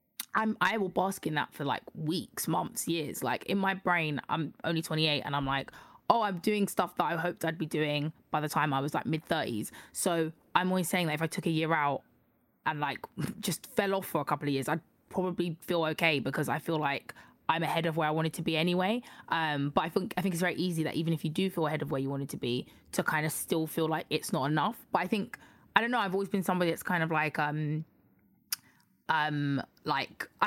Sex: female